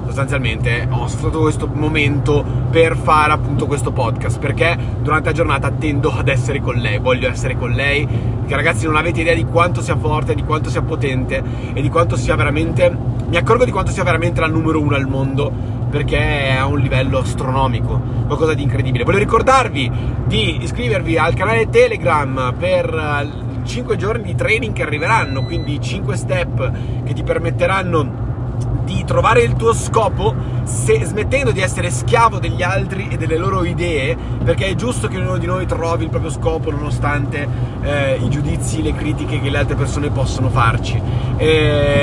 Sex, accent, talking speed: male, native, 175 wpm